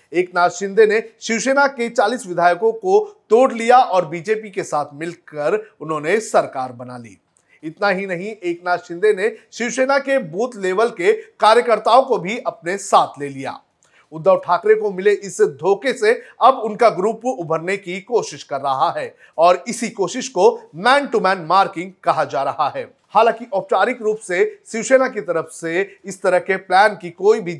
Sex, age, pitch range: male, 40-59, 180-245 Hz